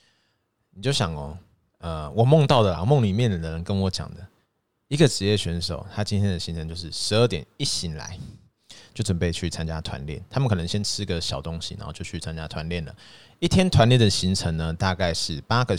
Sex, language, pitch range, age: male, Chinese, 90-115 Hz, 30-49